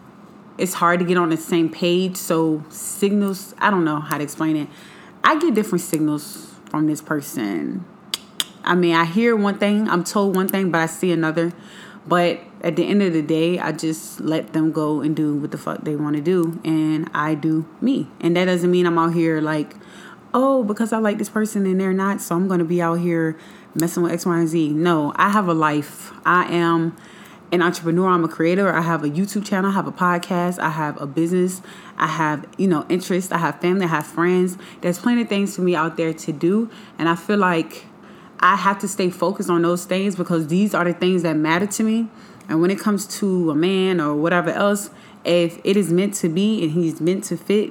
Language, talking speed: English, 230 wpm